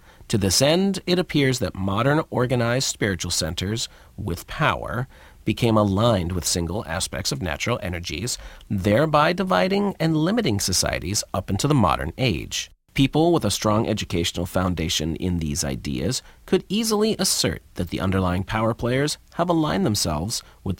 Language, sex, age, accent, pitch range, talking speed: English, male, 40-59, American, 90-135 Hz, 145 wpm